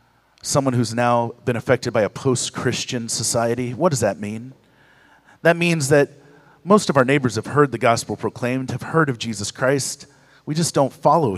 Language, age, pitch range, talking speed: English, 40-59, 135-185 Hz, 180 wpm